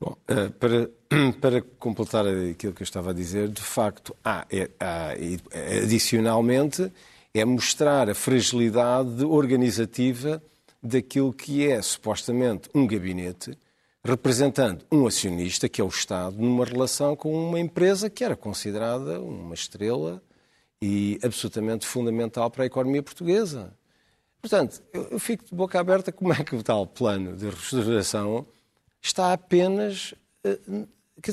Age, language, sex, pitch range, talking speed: 50-69, Portuguese, male, 115-155 Hz, 125 wpm